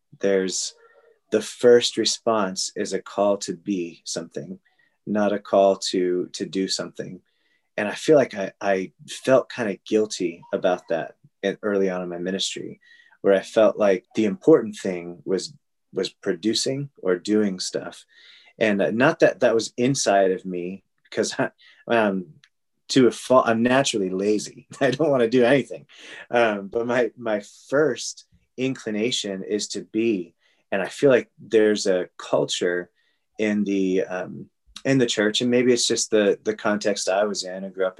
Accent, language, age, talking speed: American, English, 30-49, 165 wpm